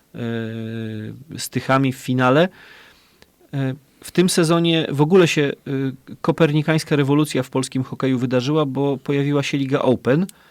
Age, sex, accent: 30-49, male, native